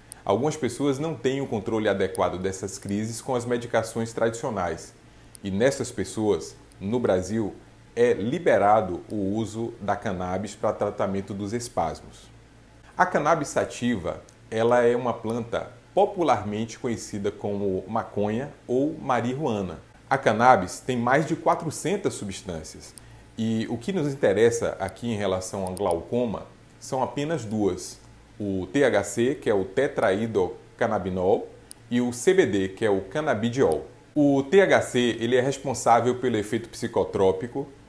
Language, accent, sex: Portuguese, Brazilian, male